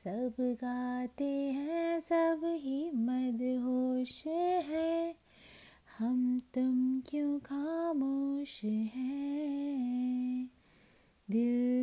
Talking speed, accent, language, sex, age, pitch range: 70 wpm, native, Hindi, female, 30-49, 230-285 Hz